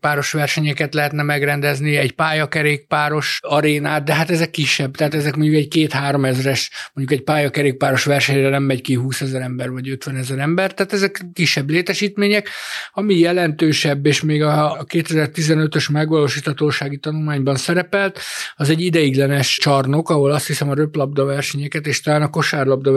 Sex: male